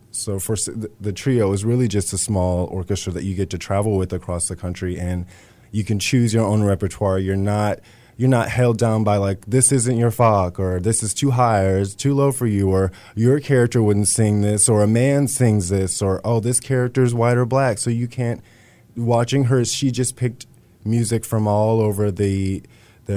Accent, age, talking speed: American, 20-39, 210 wpm